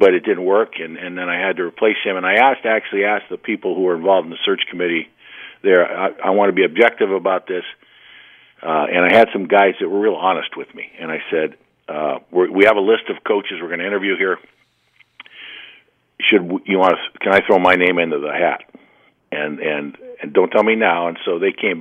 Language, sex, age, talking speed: English, male, 50-69, 240 wpm